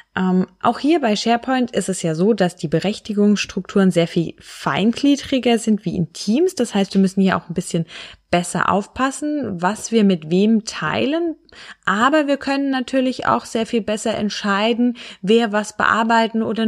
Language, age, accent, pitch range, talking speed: German, 20-39, German, 185-235 Hz, 170 wpm